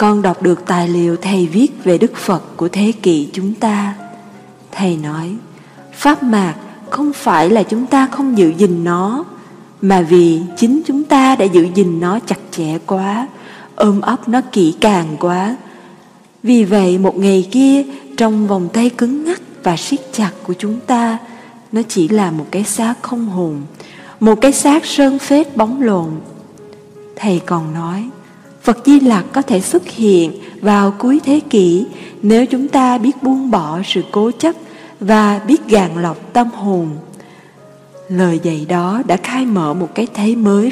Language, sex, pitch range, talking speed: Vietnamese, female, 180-240 Hz, 170 wpm